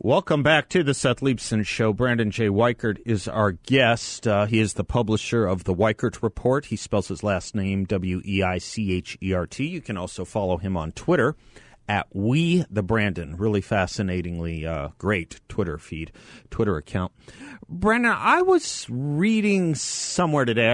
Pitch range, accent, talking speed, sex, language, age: 95-125 Hz, American, 150 wpm, male, English, 40-59